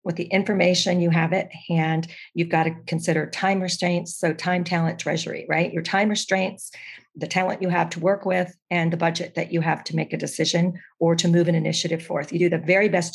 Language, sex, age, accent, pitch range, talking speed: English, female, 40-59, American, 170-200 Hz, 225 wpm